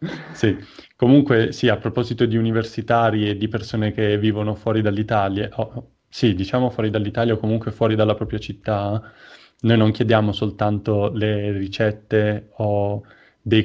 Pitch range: 105-120 Hz